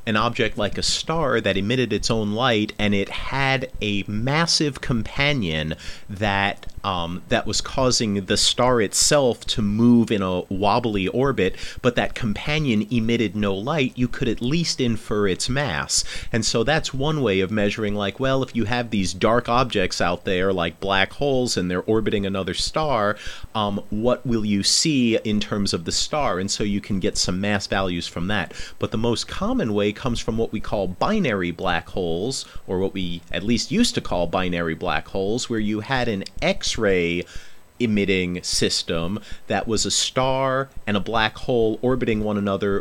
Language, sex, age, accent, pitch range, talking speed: English, male, 40-59, American, 100-125 Hz, 185 wpm